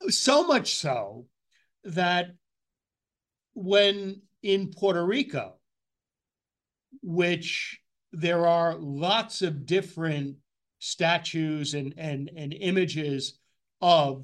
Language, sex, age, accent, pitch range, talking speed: English, male, 60-79, American, 160-195 Hz, 85 wpm